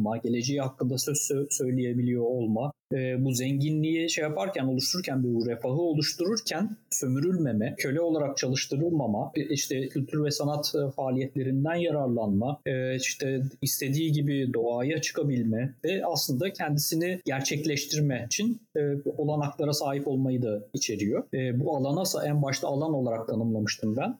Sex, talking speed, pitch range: male, 120 wpm, 125-150 Hz